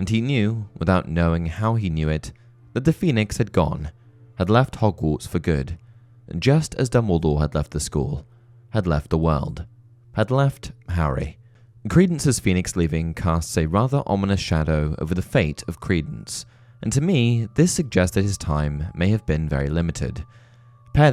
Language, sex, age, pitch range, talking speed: English, male, 20-39, 80-120 Hz, 170 wpm